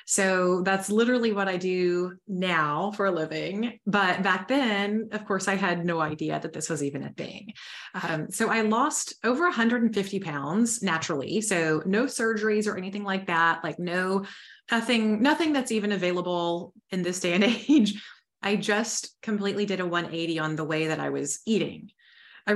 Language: English